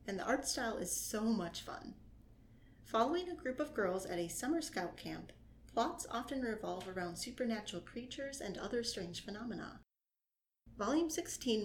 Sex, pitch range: female, 180-240 Hz